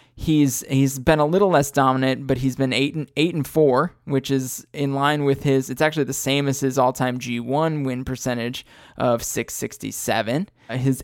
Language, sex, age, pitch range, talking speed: English, male, 20-39, 125-145 Hz, 200 wpm